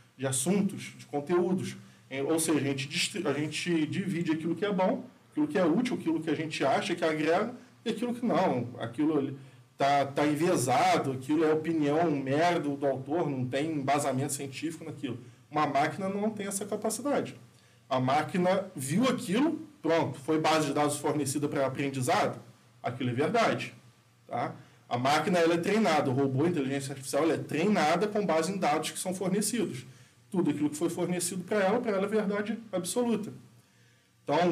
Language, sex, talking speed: Portuguese, male, 175 wpm